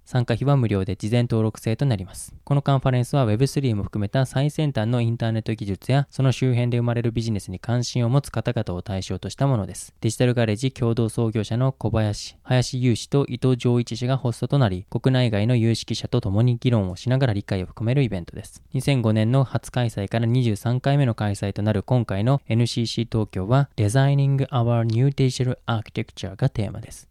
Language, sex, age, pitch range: Japanese, male, 20-39, 105-130 Hz